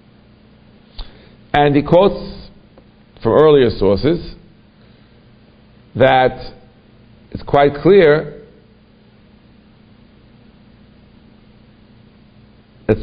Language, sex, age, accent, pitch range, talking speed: English, male, 50-69, American, 110-130 Hz, 50 wpm